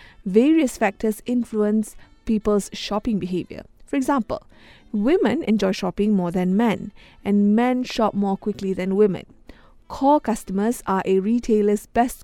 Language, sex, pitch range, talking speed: English, female, 200-260 Hz, 130 wpm